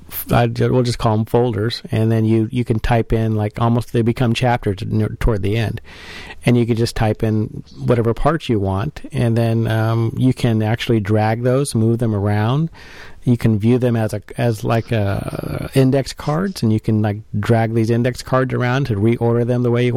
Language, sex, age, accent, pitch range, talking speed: English, male, 40-59, American, 110-130 Hz, 205 wpm